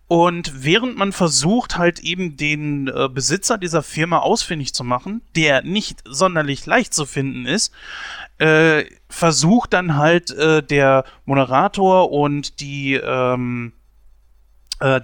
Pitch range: 135-175 Hz